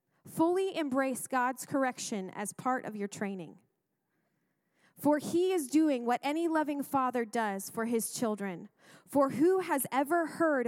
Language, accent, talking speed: English, American, 145 wpm